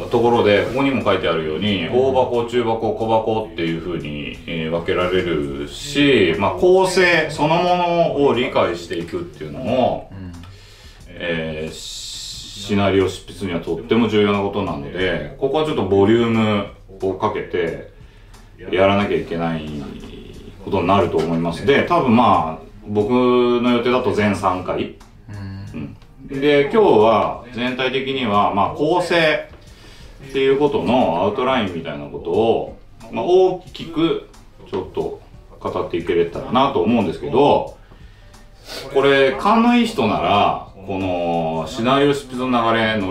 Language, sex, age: Japanese, male, 30-49